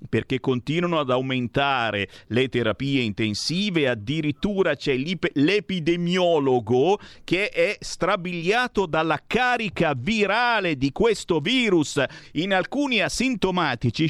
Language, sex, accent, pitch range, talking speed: Italian, male, native, 120-175 Hz, 95 wpm